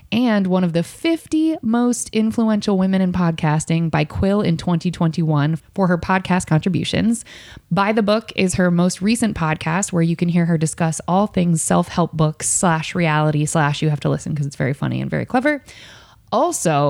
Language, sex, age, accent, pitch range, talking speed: English, female, 20-39, American, 155-200 Hz, 180 wpm